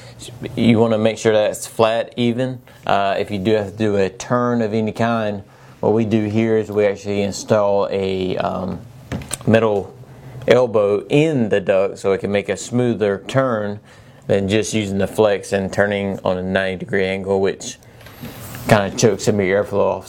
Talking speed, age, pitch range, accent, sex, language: 190 wpm, 30-49, 105-120 Hz, American, male, English